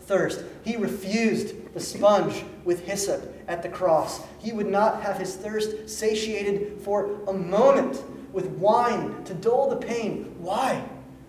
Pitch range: 120-200 Hz